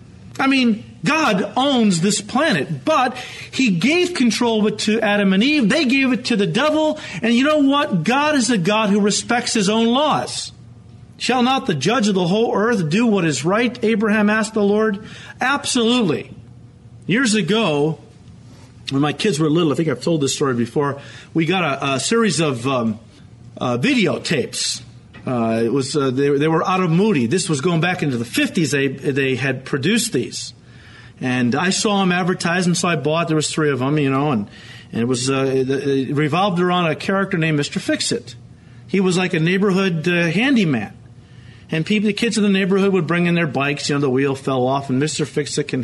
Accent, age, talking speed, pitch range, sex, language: American, 40-59, 205 wpm, 140-210 Hz, male, English